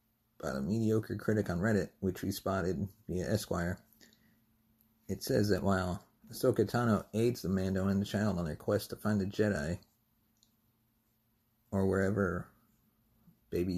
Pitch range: 100-110 Hz